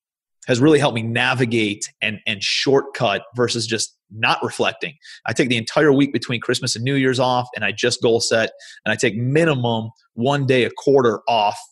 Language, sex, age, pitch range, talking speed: English, male, 30-49, 115-140 Hz, 190 wpm